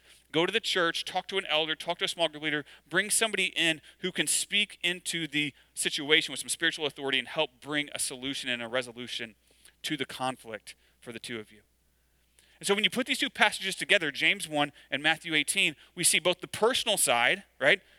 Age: 30-49